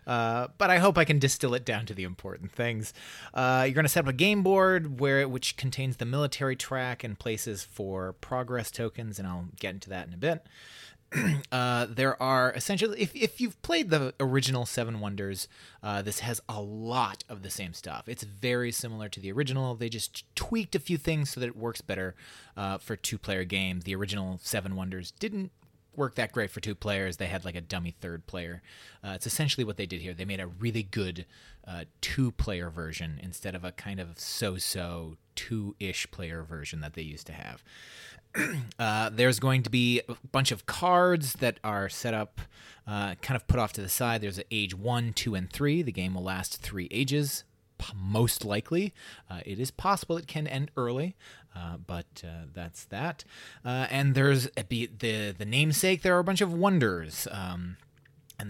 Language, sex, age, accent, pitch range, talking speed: English, male, 30-49, American, 95-135 Hz, 205 wpm